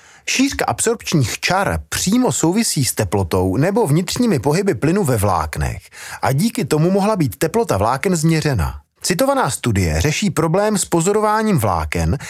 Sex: male